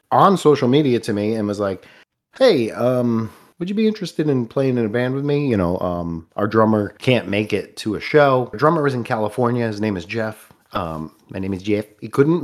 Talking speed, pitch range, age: 225 wpm, 95-125 Hz, 30-49